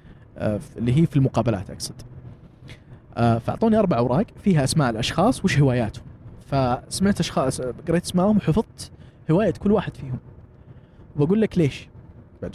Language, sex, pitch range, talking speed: Arabic, male, 125-175 Hz, 125 wpm